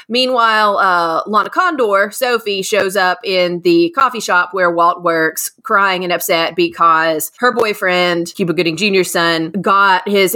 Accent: American